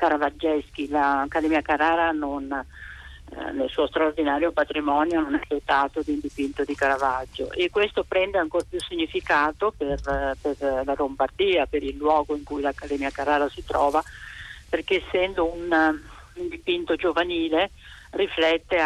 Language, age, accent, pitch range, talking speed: Italian, 40-59, native, 140-170 Hz, 135 wpm